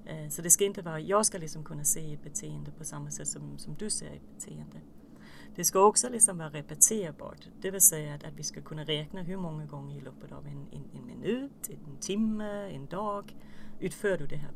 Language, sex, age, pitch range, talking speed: Swedish, female, 40-59, 145-200 Hz, 220 wpm